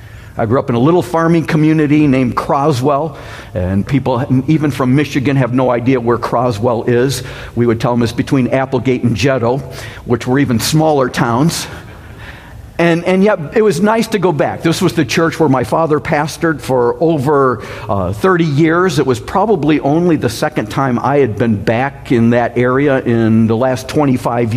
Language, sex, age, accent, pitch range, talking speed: English, male, 50-69, American, 120-155 Hz, 185 wpm